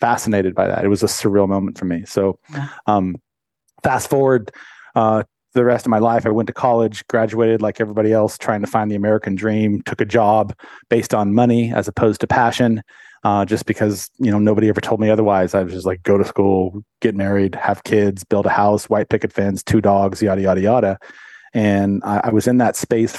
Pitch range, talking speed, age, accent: 105-120 Hz, 215 wpm, 30-49, American